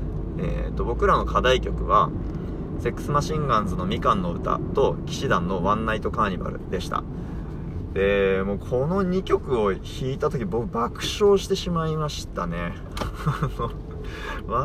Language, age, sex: Japanese, 20-39, male